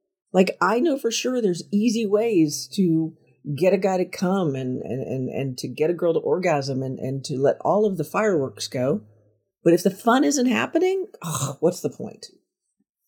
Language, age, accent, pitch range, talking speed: English, 50-69, American, 140-200 Hz, 185 wpm